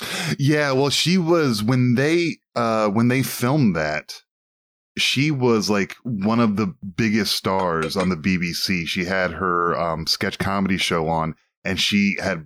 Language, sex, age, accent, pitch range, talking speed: English, male, 10-29, American, 90-115 Hz, 160 wpm